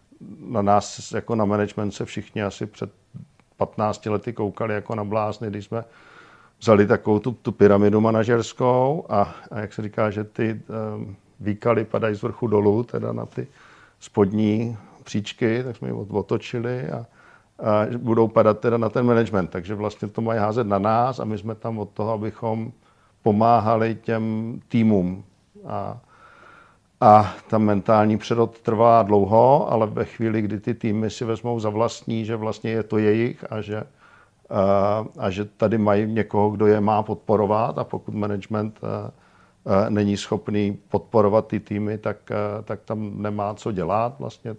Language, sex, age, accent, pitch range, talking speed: Czech, male, 50-69, native, 105-115 Hz, 155 wpm